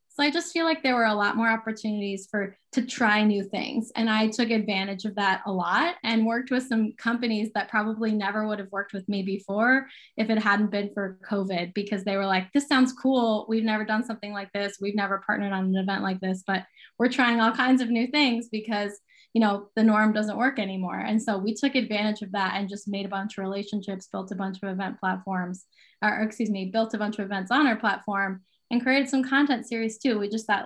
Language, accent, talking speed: English, American, 235 wpm